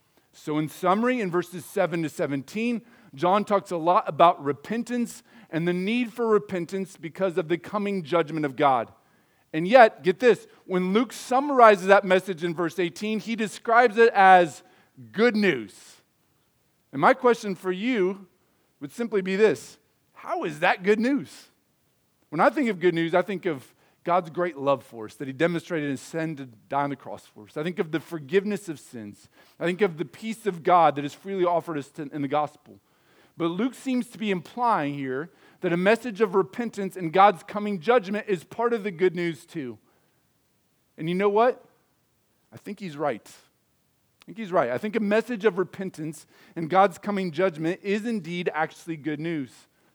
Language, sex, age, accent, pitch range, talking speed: English, male, 40-59, American, 160-210 Hz, 185 wpm